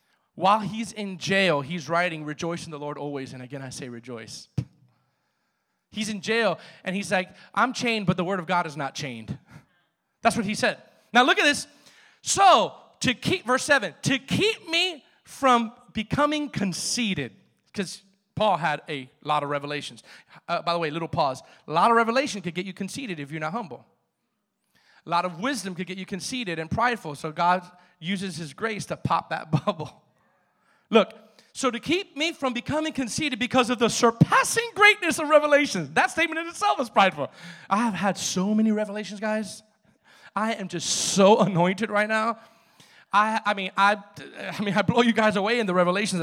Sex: male